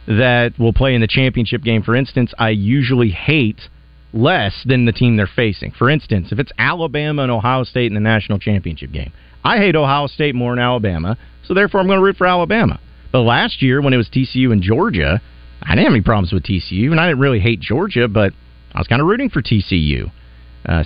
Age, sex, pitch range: 40-59, male, 95-135 Hz